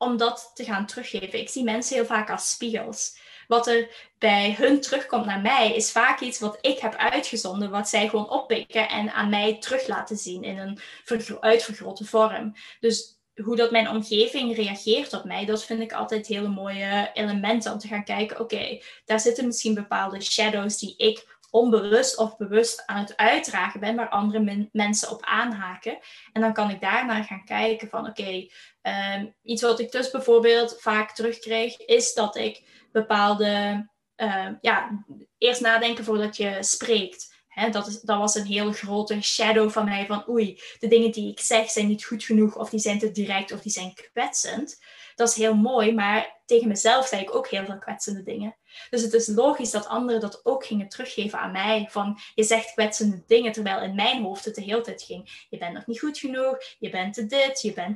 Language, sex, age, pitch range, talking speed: Dutch, female, 20-39, 210-235 Hz, 195 wpm